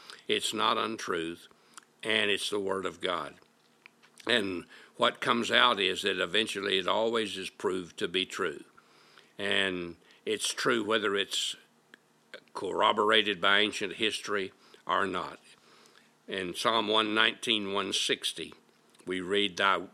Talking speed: 120 wpm